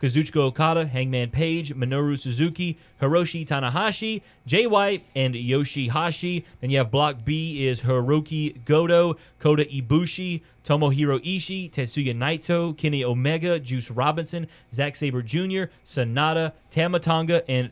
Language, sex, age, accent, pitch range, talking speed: English, male, 20-39, American, 130-160 Hz, 120 wpm